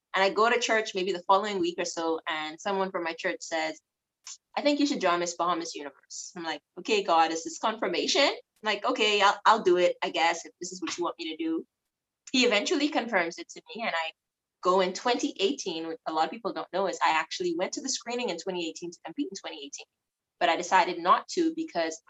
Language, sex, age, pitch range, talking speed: English, female, 20-39, 175-280 Hz, 235 wpm